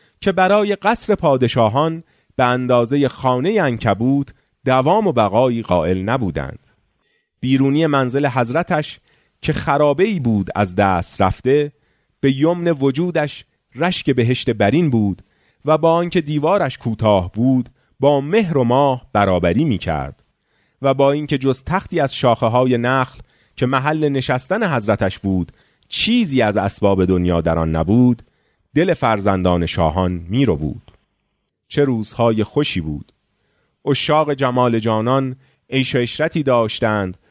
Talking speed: 130 wpm